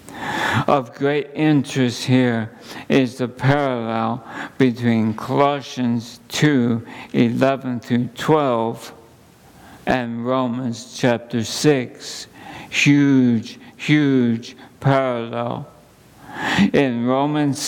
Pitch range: 120-150 Hz